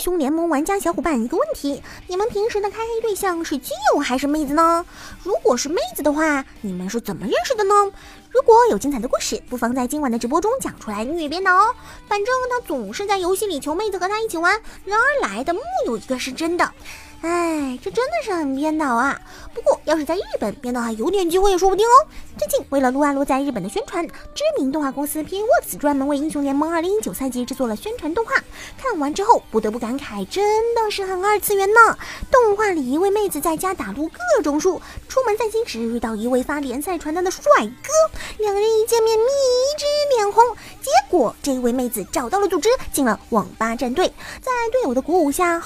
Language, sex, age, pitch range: Chinese, male, 20-39, 270-400 Hz